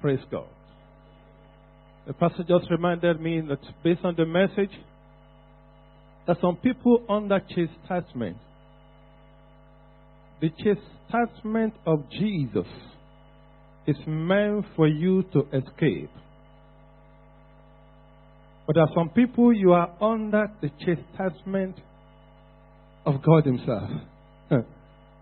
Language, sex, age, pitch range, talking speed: English, male, 50-69, 140-190 Hz, 100 wpm